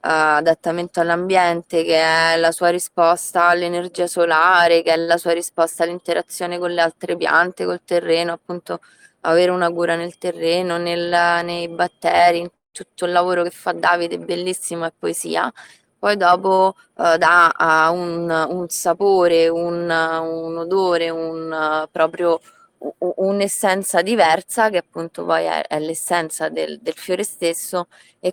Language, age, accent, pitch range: Italian, 20-39, native, 160-175 Hz